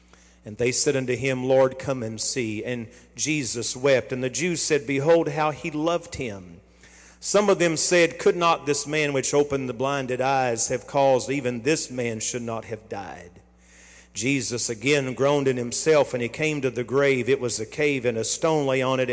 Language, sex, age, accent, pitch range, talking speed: English, male, 50-69, American, 120-150 Hz, 200 wpm